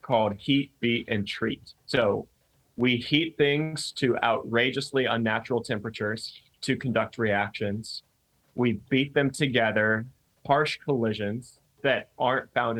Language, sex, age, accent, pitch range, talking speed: English, male, 20-39, American, 110-130 Hz, 115 wpm